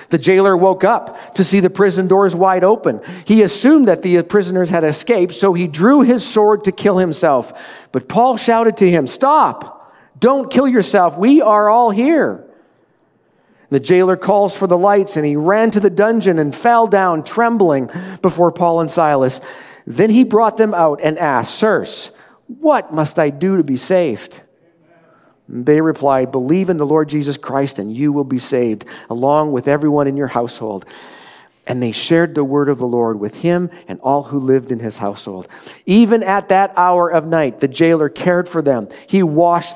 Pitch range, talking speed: 140-195 Hz, 185 wpm